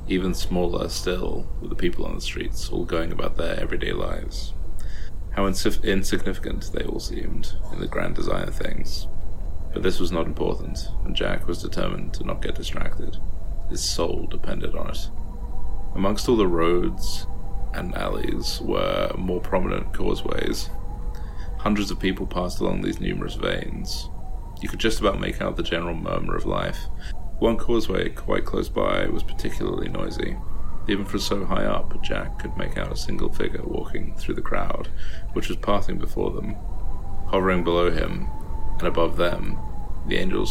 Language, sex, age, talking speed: English, male, 30-49, 165 wpm